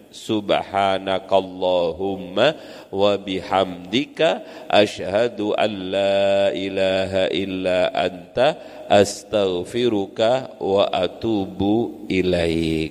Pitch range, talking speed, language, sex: 105-155 Hz, 45 wpm, Indonesian, male